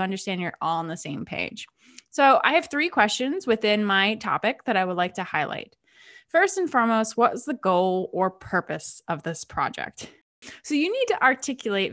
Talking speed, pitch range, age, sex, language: 190 wpm, 190-270 Hz, 20-39, female, English